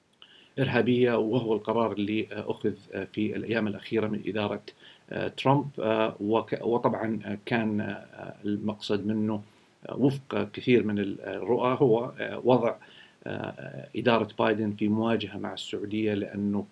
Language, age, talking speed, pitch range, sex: Arabic, 40-59, 100 wpm, 105-115 Hz, male